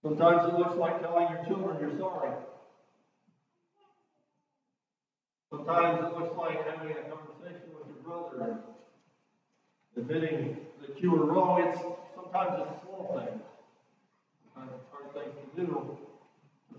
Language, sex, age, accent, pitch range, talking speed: English, male, 50-69, American, 155-215 Hz, 130 wpm